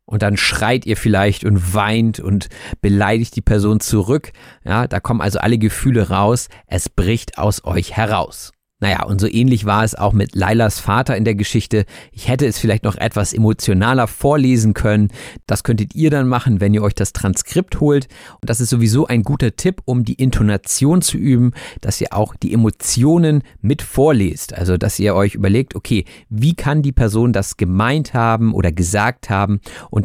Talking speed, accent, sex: 185 wpm, German, male